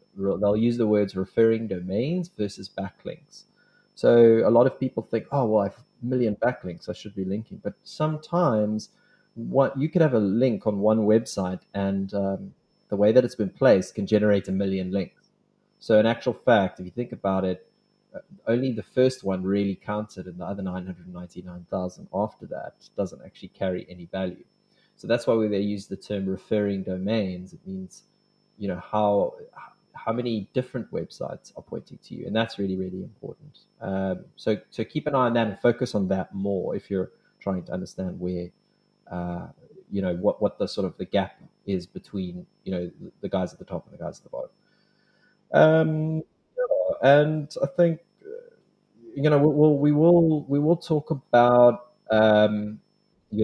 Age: 30-49